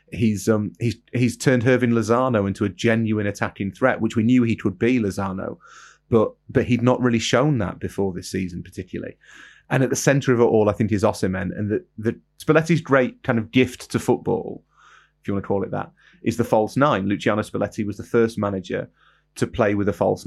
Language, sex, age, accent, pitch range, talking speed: English, male, 30-49, British, 105-125 Hz, 220 wpm